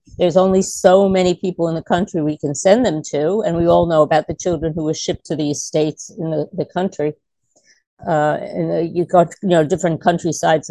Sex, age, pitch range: female, 50-69, 170-230 Hz